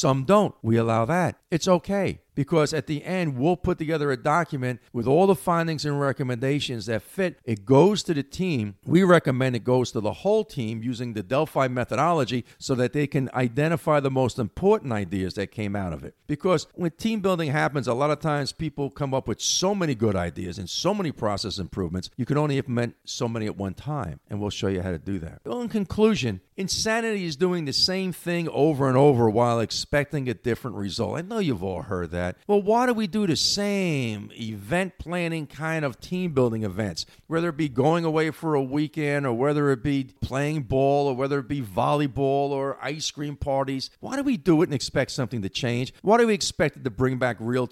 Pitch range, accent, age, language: 115-160 Hz, American, 50-69, English